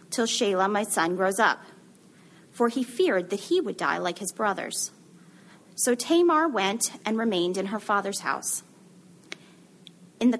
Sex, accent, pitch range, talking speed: female, American, 185-245 Hz, 150 wpm